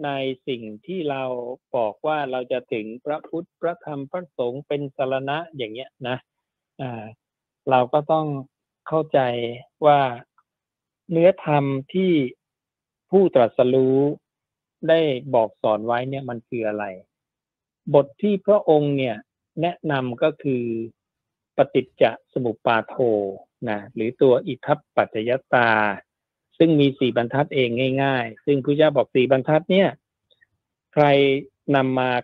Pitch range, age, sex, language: 120-150 Hz, 60-79, male, Thai